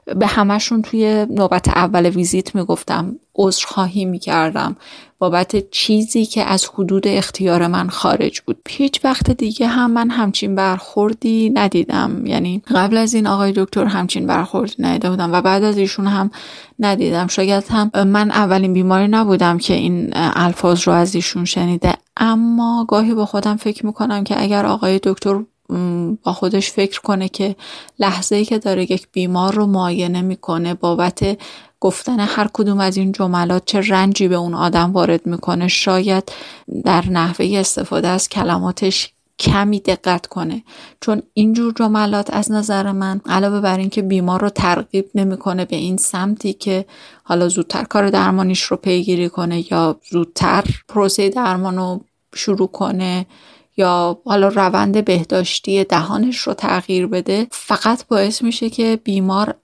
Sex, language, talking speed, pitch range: female, Persian, 150 wpm, 180-215 Hz